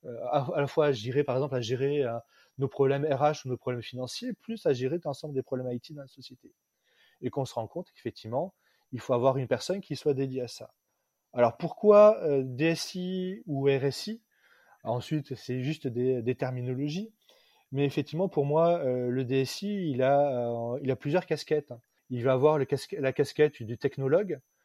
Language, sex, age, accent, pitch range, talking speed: French, male, 30-49, French, 130-160 Hz, 185 wpm